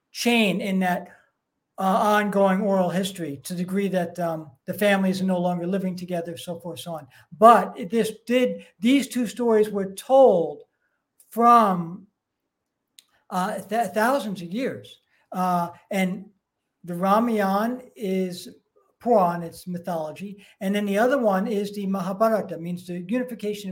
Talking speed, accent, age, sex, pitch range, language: 140 wpm, American, 60-79, male, 180-225 Hz, English